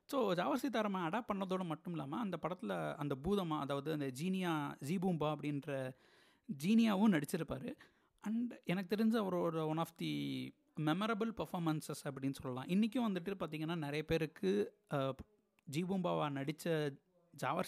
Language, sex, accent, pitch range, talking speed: Tamil, male, native, 140-190 Hz, 130 wpm